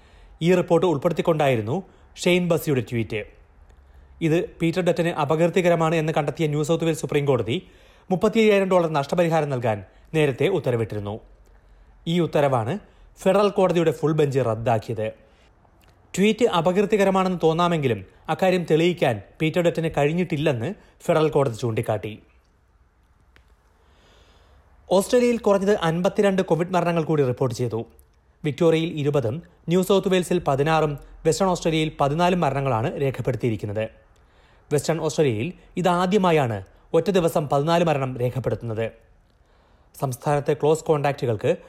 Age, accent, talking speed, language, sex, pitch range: 30-49, native, 100 wpm, Malayalam, male, 110-170 Hz